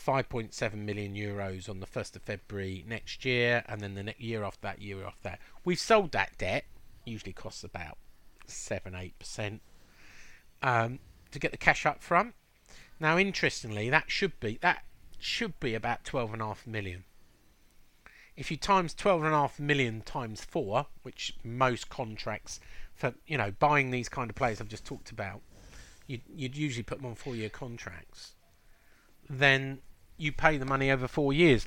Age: 40-59